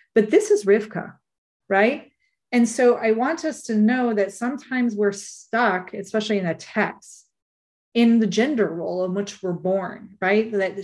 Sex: female